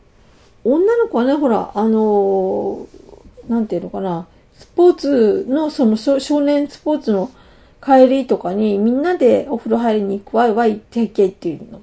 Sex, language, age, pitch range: female, Japanese, 40-59, 205-280 Hz